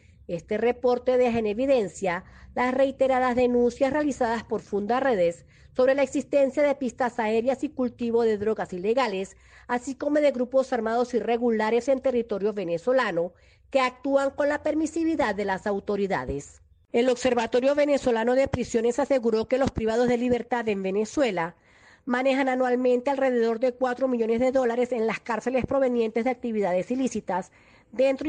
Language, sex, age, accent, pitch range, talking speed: Spanish, female, 40-59, American, 215-260 Hz, 145 wpm